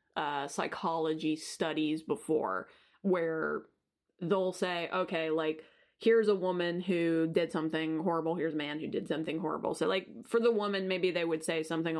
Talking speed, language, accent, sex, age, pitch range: 165 wpm, English, American, female, 20-39, 165-205 Hz